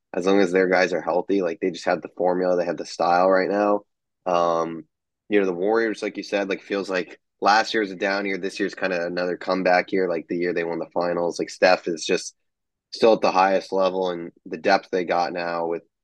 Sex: male